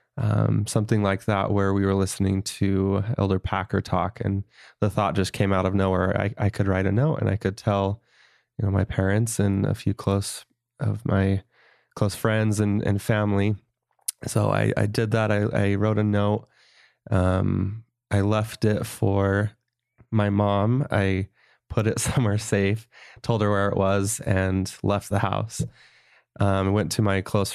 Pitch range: 95-115 Hz